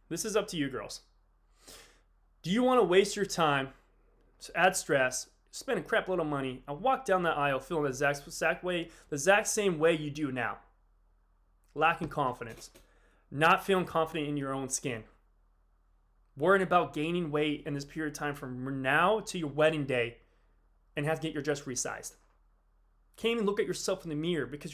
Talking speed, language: 190 wpm, English